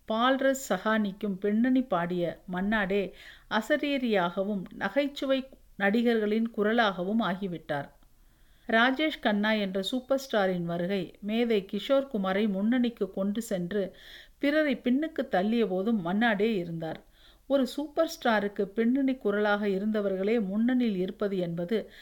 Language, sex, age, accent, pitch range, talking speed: Tamil, female, 50-69, native, 195-245 Hz, 100 wpm